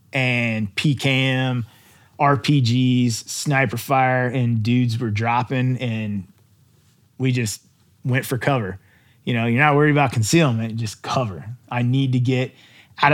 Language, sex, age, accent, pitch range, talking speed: English, male, 30-49, American, 115-140 Hz, 130 wpm